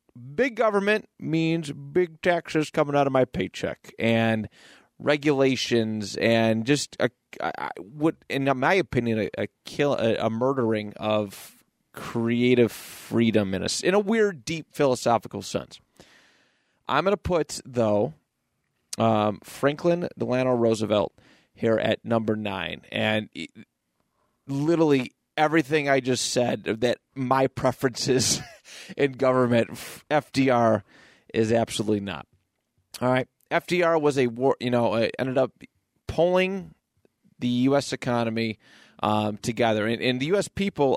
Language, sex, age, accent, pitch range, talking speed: English, male, 30-49, American, 115-145 Hz, 120 wpm